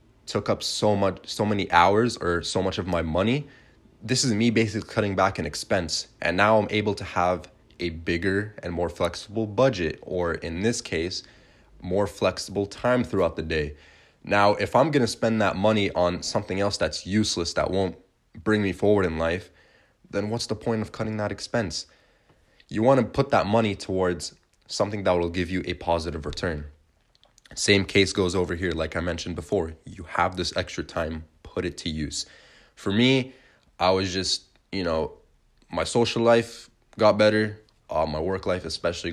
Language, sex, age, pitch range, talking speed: English, male, 20-39, 85-110 Hz, 185 wpm